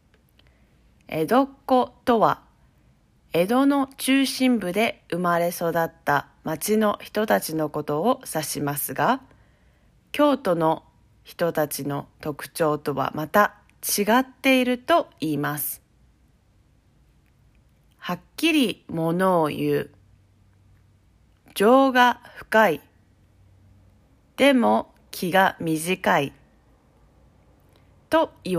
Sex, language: female, Japanese